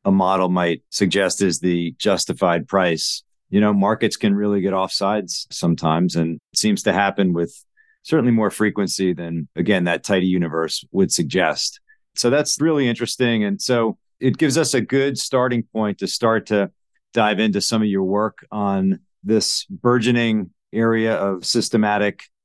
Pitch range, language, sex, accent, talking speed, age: 100-135 Hz, English, male, American, 160 wpm, 40-59